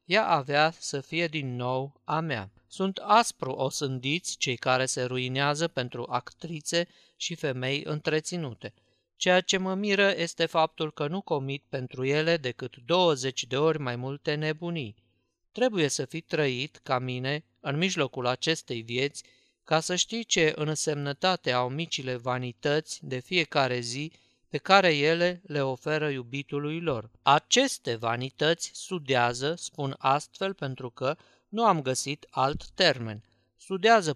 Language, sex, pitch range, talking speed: Romanian, male, 130-165 Hz, 140 wpm